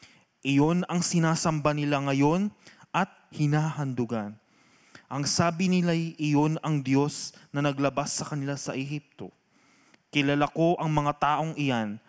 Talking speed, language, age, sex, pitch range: 125 wpm, Filipino, 20-39, male, 130-150 Hz